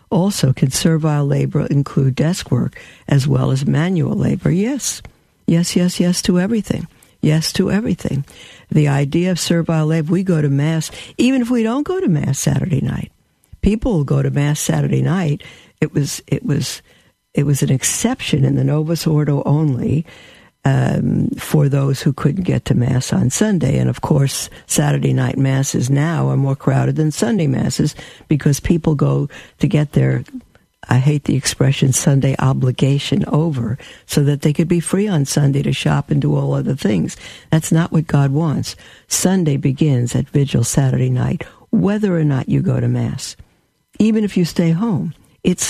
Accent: American